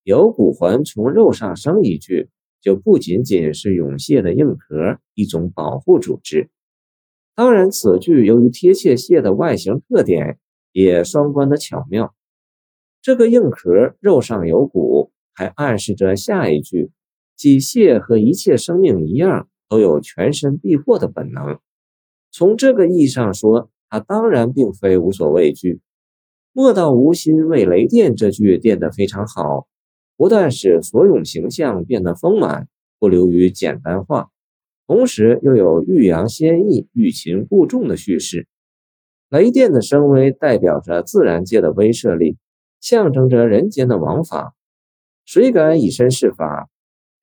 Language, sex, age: Chinese, male, 50-69